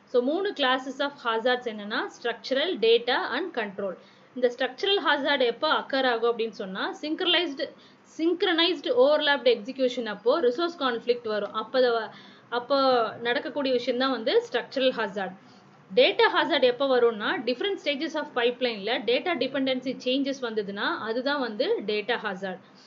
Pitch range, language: 235-295 Hz, Tamil